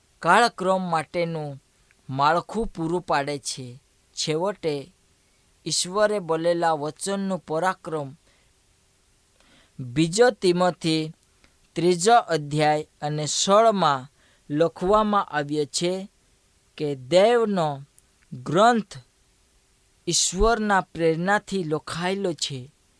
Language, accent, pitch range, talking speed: Hindi, native, 155-200 Hz, 55 wpm